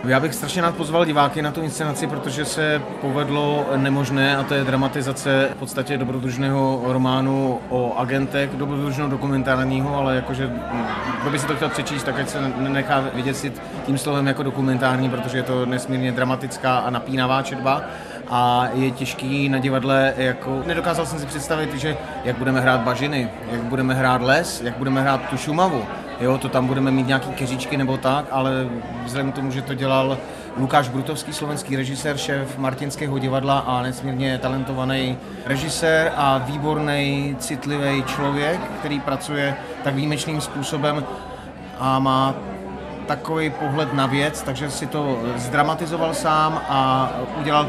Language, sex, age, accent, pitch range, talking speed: Czech, male, 30-49, native, 130-145 Hz, 155 wpm